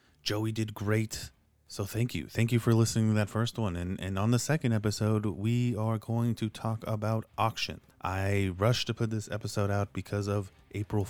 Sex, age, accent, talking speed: male, 30-49, American, 200 wpm